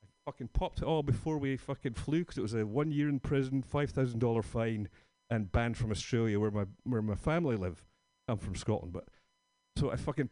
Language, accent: English, British